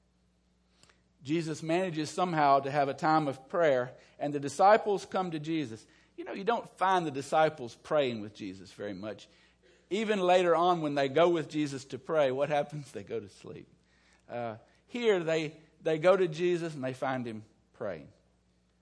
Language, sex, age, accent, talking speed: English, male, 50-69, American, 175 wpm